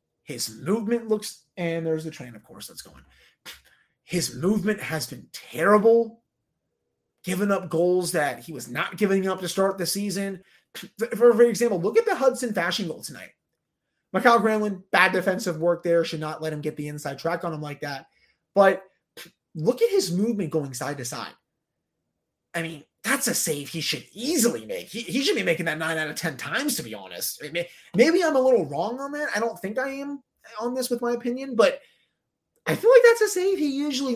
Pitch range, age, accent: 160-230 Hz, 30-49, American